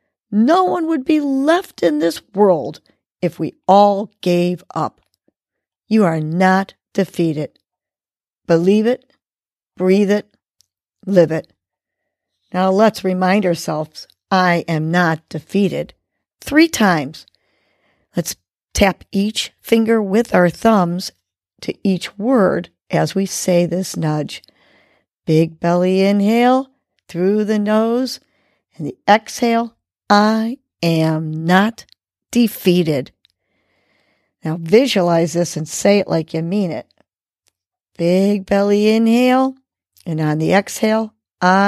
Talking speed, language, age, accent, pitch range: 110 wpm, English, 50-69, American, 170-220 Hz